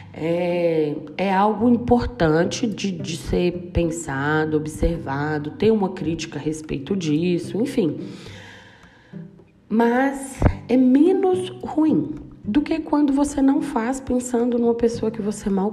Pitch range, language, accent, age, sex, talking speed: 160-235 Hz, Portuguese, Brazilian, 20-39, female, 120 wpm